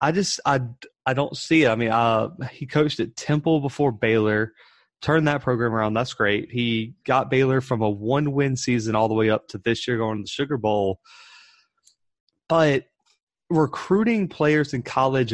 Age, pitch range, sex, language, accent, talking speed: 20-39, 110-140 Hz, male, English, American, 185 wpm